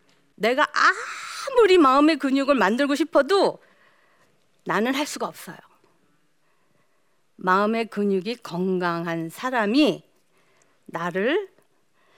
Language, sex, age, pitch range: Korean, female, 50-69, 195-315 Hz